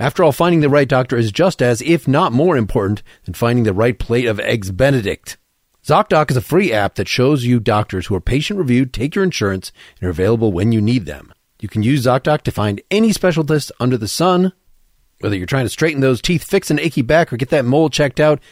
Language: English